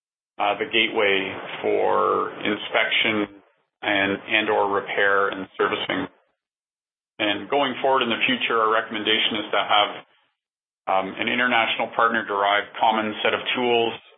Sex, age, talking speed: male, 40-59, 130 wpm